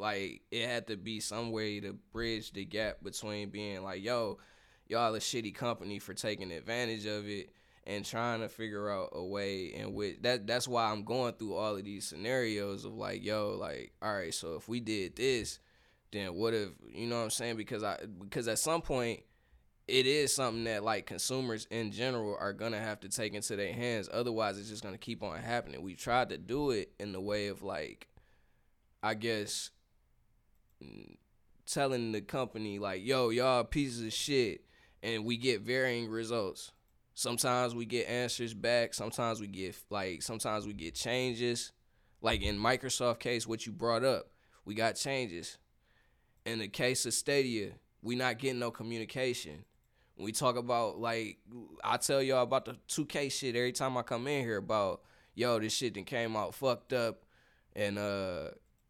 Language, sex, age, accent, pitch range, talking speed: English, male, 10-29, American, 105-120 Hz, 185 wpm